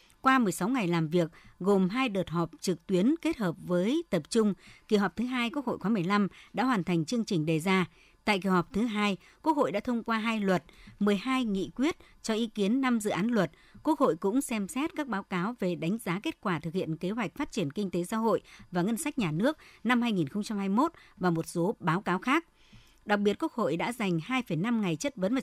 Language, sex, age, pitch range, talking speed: Vietnamese, male, 60-79, 175-235 Hz, 235 wpm